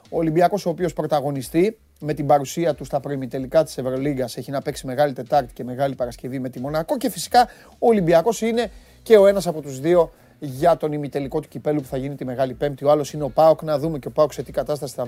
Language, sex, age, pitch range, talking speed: Greek, male, 30-49, 130-170 Hz, 240 wpm